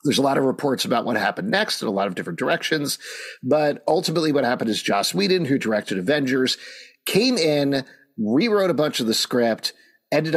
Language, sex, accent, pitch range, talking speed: English, male, American, 115-170 Hz, 195 wpm